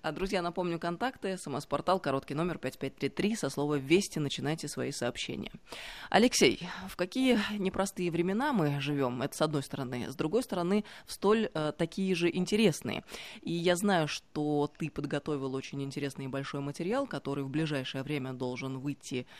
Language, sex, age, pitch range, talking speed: Russian, female, 20-39, 140-185 Hz, 155 wpm